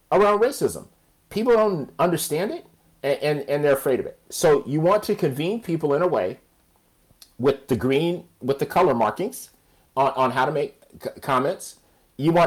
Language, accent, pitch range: English, American, 130-170 Hz